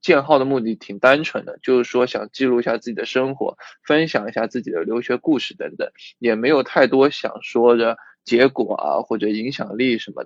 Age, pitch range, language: 20-39, 115-145 Hz, Chinese